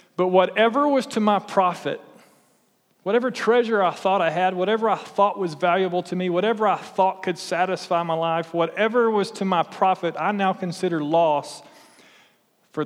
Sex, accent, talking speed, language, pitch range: male, American, 170 wpm, English, 160-195 Hz